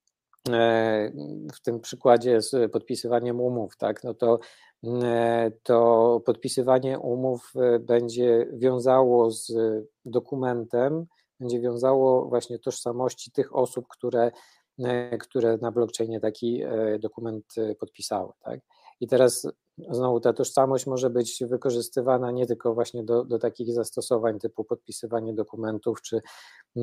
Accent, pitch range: native, 115-130 Hz